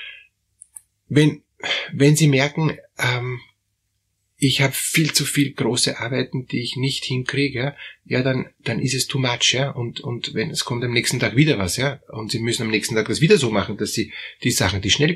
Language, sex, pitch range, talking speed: German, male, 110-140 Hz, 205 wpm